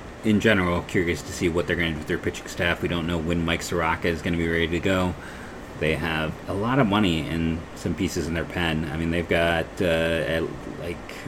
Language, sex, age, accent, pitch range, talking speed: English, male, 30-49, American, 80-95 Hz, 240 wpm